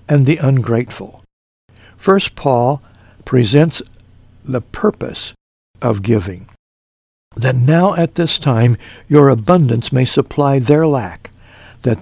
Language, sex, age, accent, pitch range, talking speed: English, male, 60-79, American, 110-150 Hz, 110 wpm